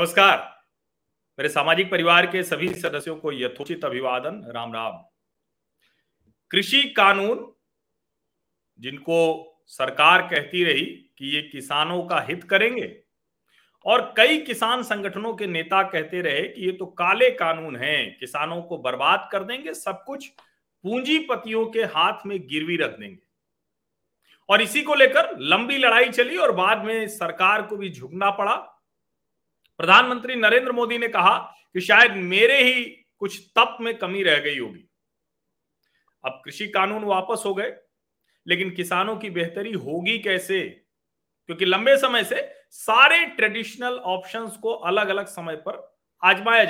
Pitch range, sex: 175-235 Hz, male